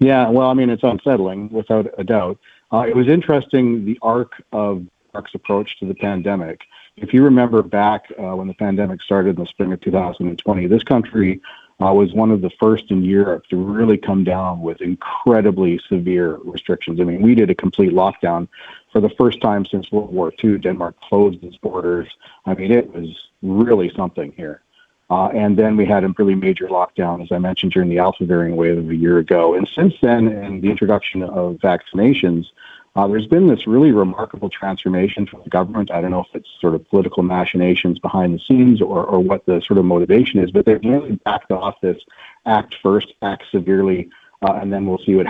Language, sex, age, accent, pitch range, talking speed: English, male, 40-59, American, 90-105 Hz, 205 wpm